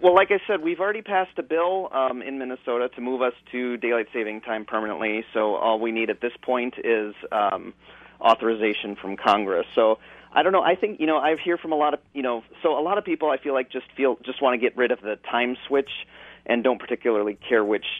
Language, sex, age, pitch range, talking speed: English, male, 30-49, 110-135 Hz, 245 wpm